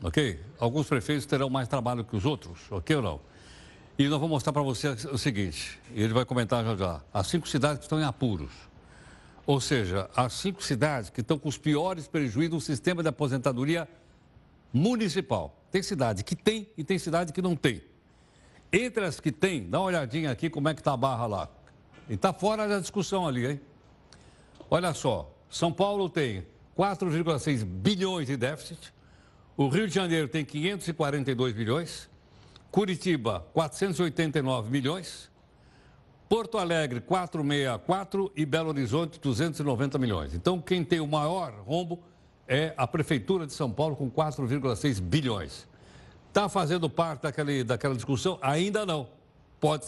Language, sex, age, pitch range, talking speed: Portuguese, male, 60-79, 135-180 Hz, 155 wpm